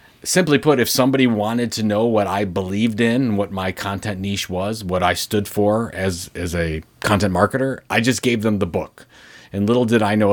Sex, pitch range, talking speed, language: male, 90-110 Hz, 215 wpm, English